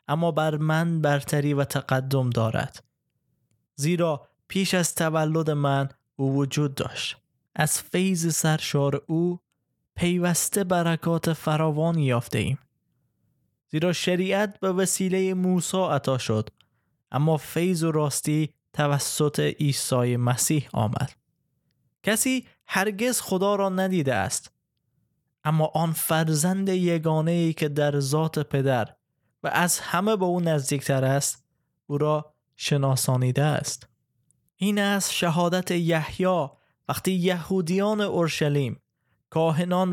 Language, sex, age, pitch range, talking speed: Persian, male, 20-39, 140-175 Hz, 110 wpm